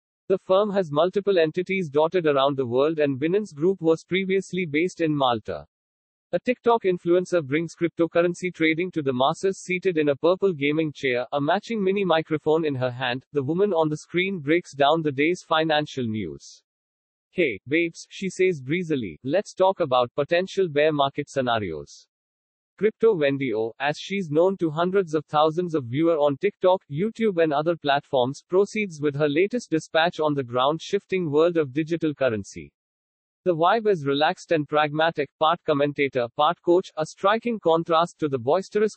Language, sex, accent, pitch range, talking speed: English, male, Indian, 145-180 Hz, 165 wpm